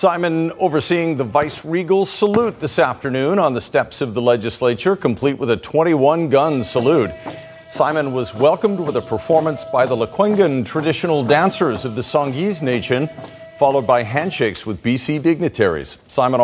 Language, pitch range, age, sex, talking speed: English, 120-165 Hz, 50-69, male, 150 wpm